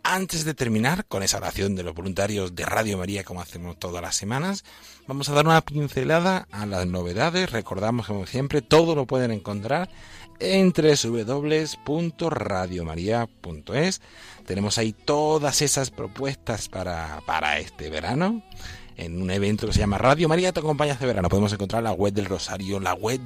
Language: Spanish